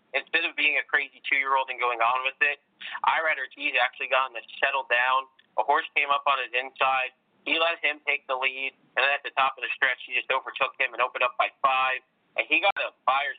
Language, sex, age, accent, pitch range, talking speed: English, male, 40-59, American, 125-135 Hz, 240 wpm